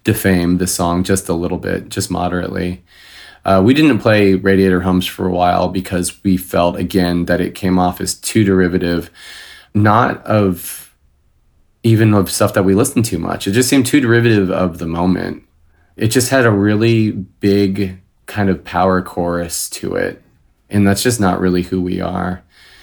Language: English